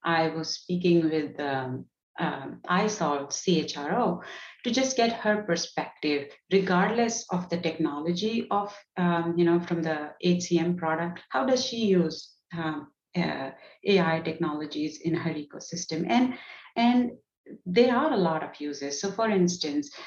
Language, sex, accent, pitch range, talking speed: English, female, Indian, 160-205 Hz, 140 wpm